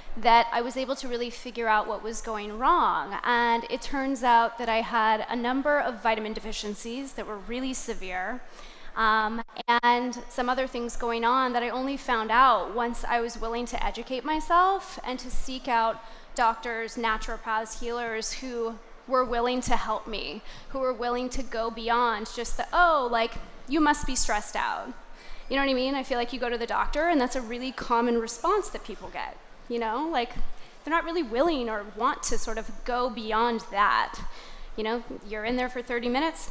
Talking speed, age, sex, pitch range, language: 195 wpm, 20-39, female, 230-275 Hz, English